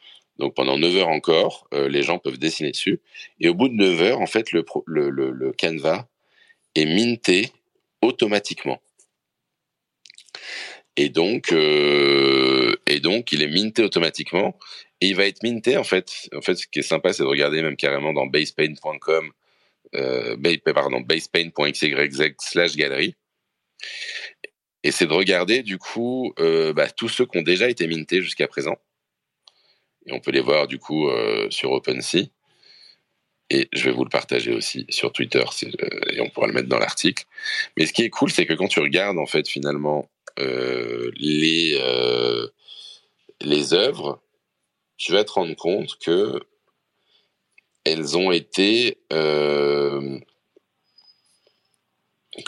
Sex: male